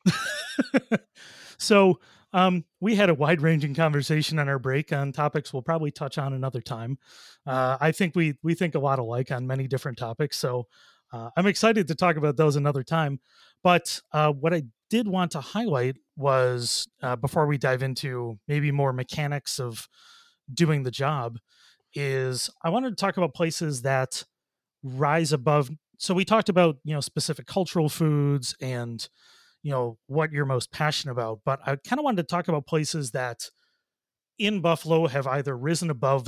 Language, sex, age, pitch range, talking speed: English, male, 30-49, 130-165 Hz, 175 wpm